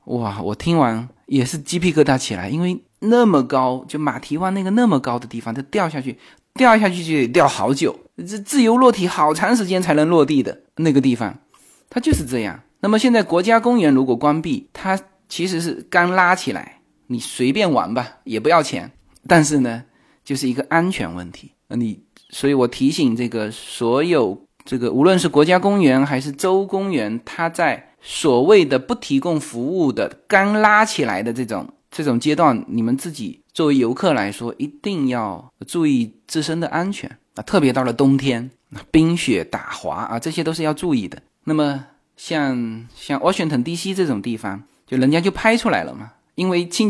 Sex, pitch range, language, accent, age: male, 130-195 Hz, Chinese, native, 20-39